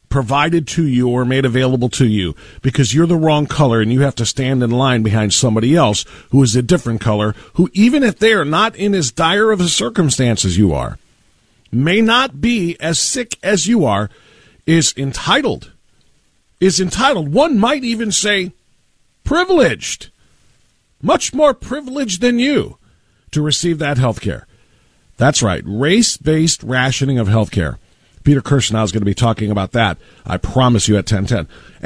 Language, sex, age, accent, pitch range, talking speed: English, male, 40-59, American, 110-165 Hz, 170 wpm